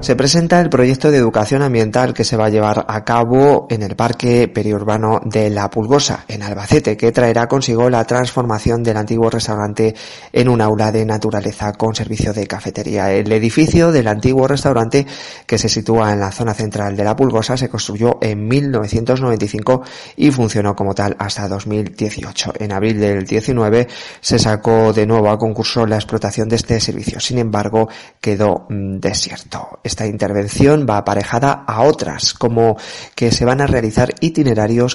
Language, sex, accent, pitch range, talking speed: Spanish, male, Spanish, 105-120 Hz, 165 wpm